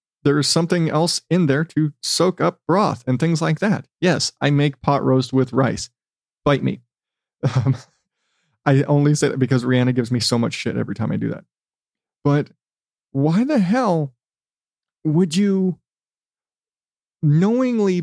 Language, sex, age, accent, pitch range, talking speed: English, male, 30-49, American, 135-185 Hz, 155 wpm